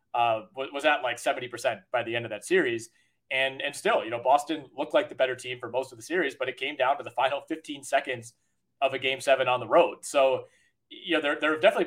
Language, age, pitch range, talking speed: English, 20-39, 125-165 Hz, 255 wpm